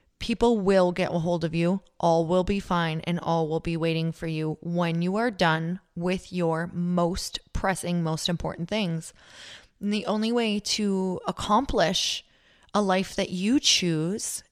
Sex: female